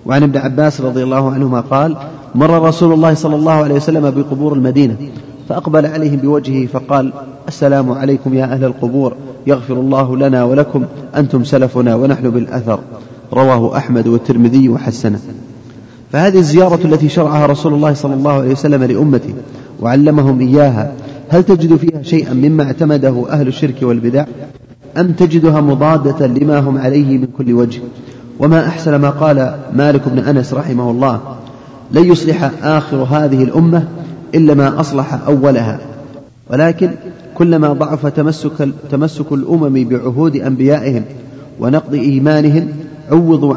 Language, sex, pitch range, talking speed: Arabic, male, 130-150 Hz, 135 wpm